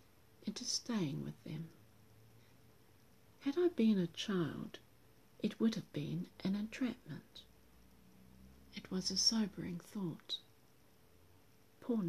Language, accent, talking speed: English, British, 105 wpm